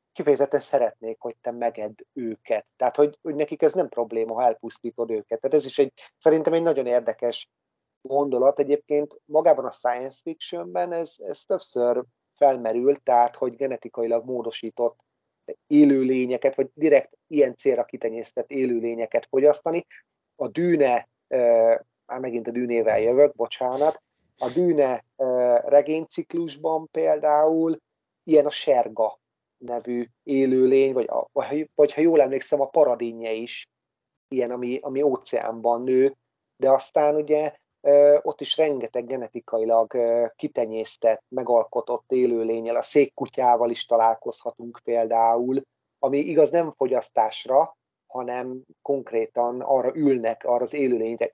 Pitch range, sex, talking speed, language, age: 120-145 Hz, male, 125 wpm, Hungarian, 30-49